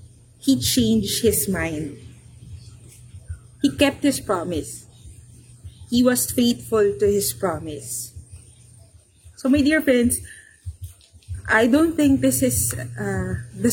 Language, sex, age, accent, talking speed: English, female, 20-39, Filipino, 110 wpm